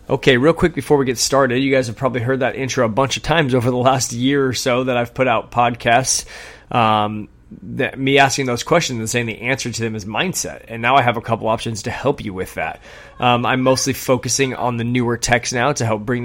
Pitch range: 115-130 Hz